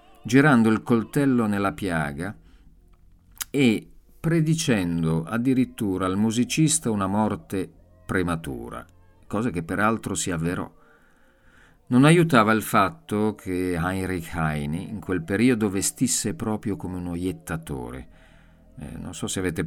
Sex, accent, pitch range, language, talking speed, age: male, native, 80-105 Hz, Italian, 115 wpm, 50-69